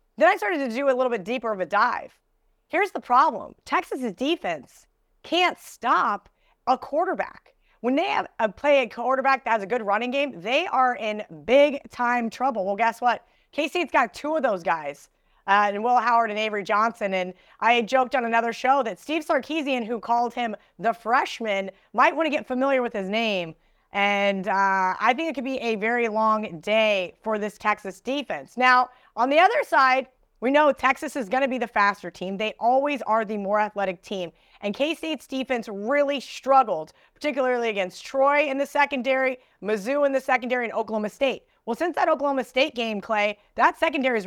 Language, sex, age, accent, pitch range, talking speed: English, female, 30-49, American, 210-270 Hz, 195 wpm